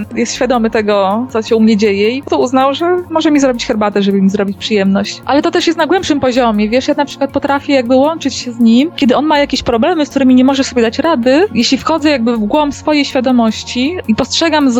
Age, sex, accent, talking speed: 20-39, female, native, 240 wpm